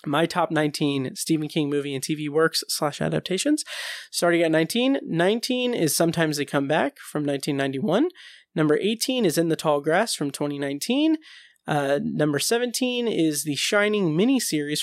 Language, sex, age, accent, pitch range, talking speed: English, male, 30-49, American, 150-230 Hz, 155 wpm